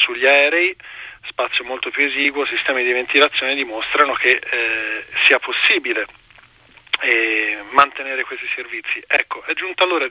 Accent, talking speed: native, 130 wpm